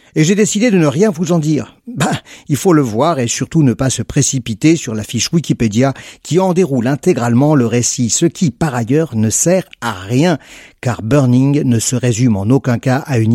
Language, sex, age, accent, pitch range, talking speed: French, male, 50-69, French, 115-160 Hz, 215 wpm